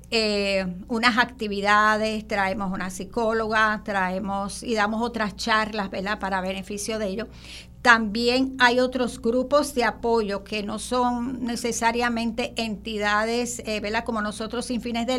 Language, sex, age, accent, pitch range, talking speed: English, female, 50-69, American, 220-250 Hz, 130 wpm